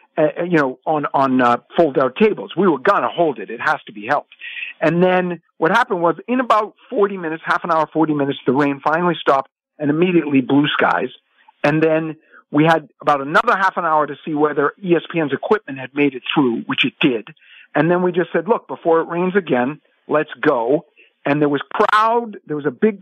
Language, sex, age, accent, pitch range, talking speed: English, male, 50-69, American, 140-180 Hz, 215 wpm